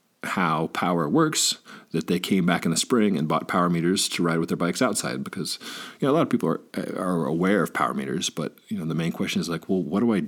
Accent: American